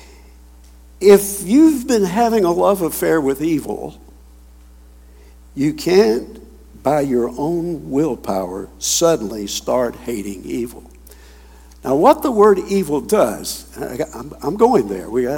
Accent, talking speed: American, 120 wpm